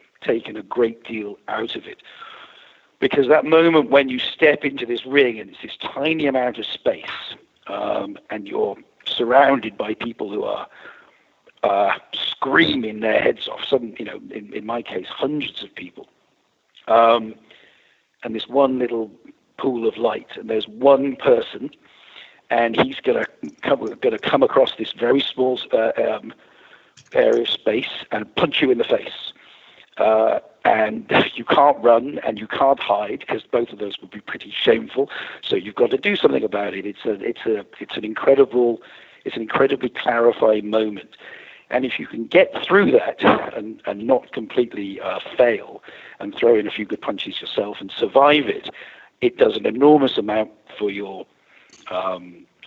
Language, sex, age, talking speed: English, male, 50-69, 170 wpm